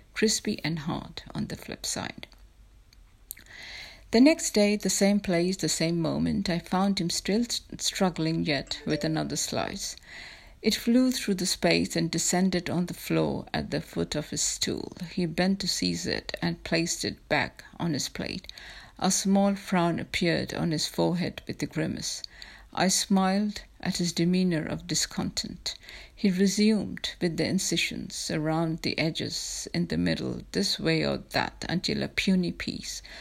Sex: female